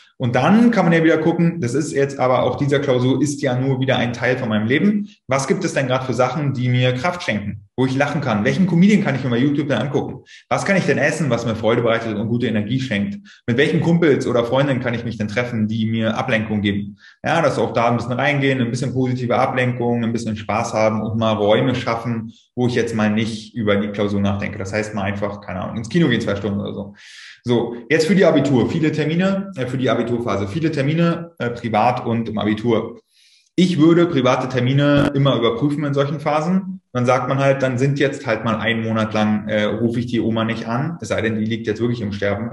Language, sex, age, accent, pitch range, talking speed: German, male, 20-39, German, 115-140 Hz, 240 wpm